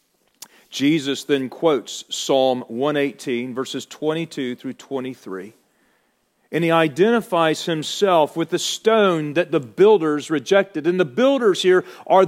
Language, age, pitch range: English, 40-59, 135-180 Hz